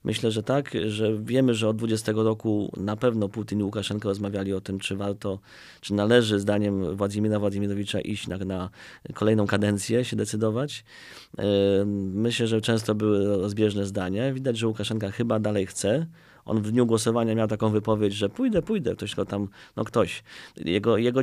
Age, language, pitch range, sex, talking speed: 30-49, Polish, 100-115 Hz, male, 170 wpm